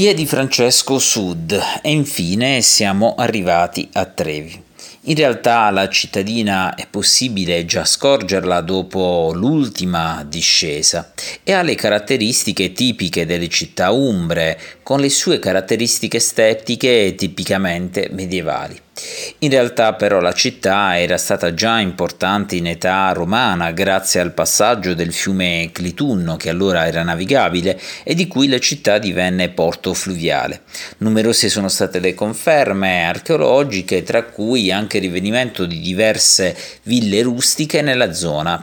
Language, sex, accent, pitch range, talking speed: Italian, male, native, 90-115 Hz, 125 wpm